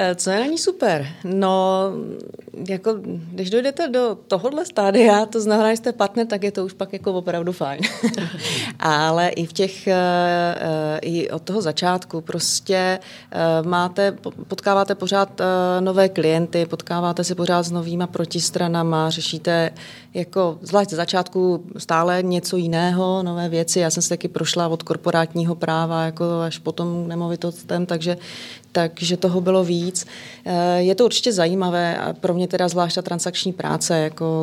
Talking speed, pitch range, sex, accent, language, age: 145 wpm, 165-190 Hz, female, native, Czech, 30-49